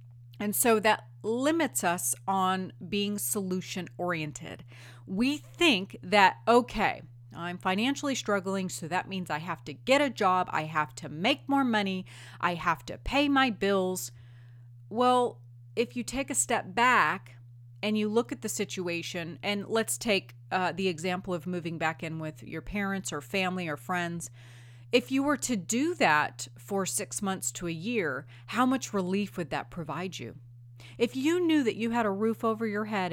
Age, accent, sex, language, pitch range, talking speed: 30-49, American, female, English, 140-225 Hz, 175 wpm